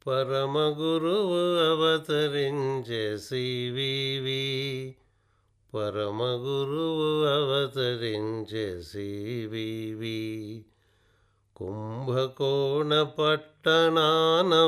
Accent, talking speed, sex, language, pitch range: native, 40 wpm, male, Telugu, 110-160 Hz